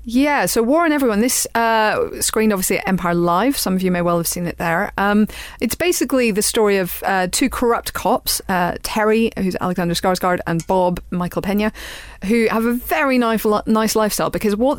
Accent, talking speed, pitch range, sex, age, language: British, 200 wpm, 170-230 Hz, female, 30-49, English